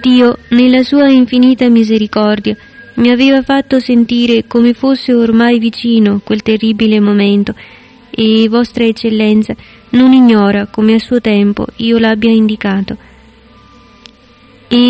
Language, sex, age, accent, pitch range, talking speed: Italian, female, 20-39, native, 220-250 Hz, 115 wpm